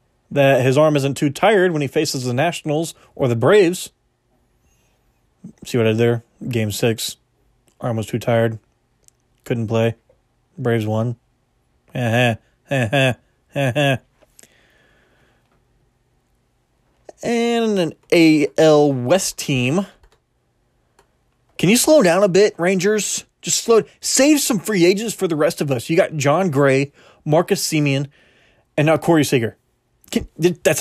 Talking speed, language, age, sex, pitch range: 125 wpm, English, 20-39, male, 125-175 Hz